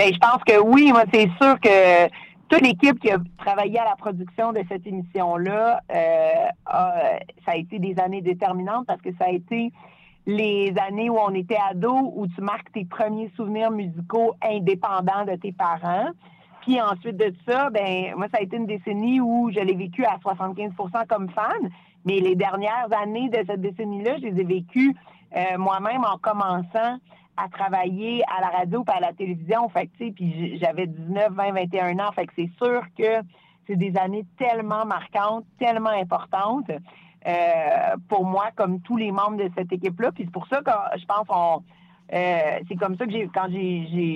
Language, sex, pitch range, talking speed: French, female, 185-230 Hz, 190 wpm